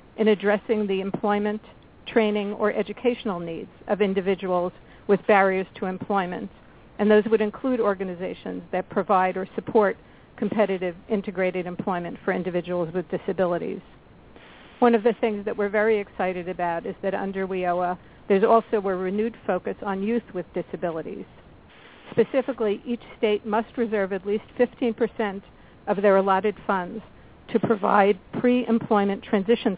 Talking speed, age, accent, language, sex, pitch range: 135 wpm, 50-69, American, English, female, 190-220 Hz